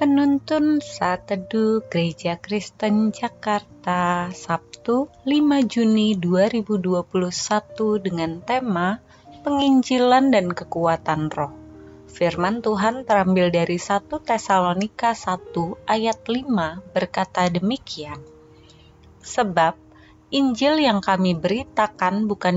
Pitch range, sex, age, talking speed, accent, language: 175-225 Hz, female, 30-49, 85 wpm, native, Indonesian